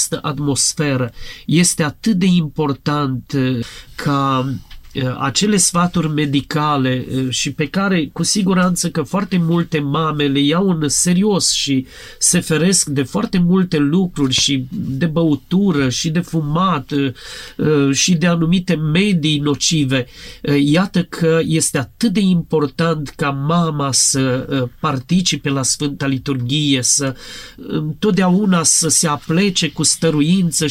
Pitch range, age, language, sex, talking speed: 140-175 Hz, 40-59, Romanian, male, 115 wpm